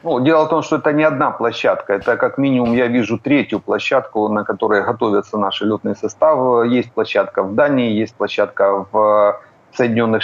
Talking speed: 175 wpm